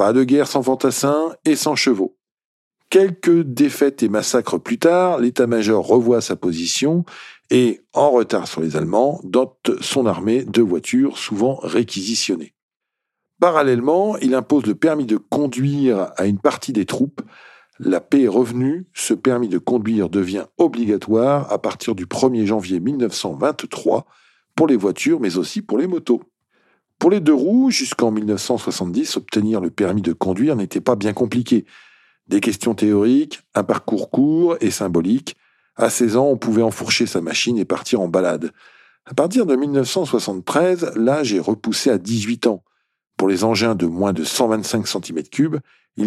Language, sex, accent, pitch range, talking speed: French, male, French, 105-145 Hz, 160 wpm